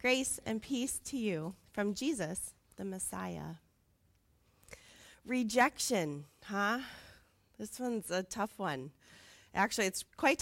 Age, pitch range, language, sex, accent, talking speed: 30-49, 190-250 Hz, English, female, American, 110 wpm